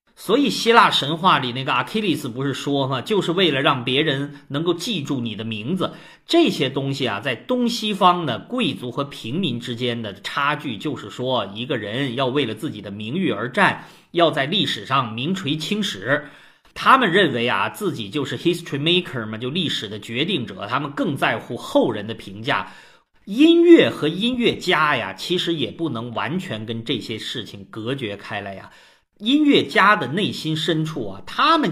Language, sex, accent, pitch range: Chinese, male, native, 125-185 Hz